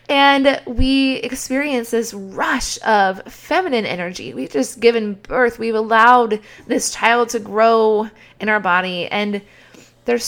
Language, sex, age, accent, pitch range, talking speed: English, female, 20-39, American, 205-260 Hz, 135 wpm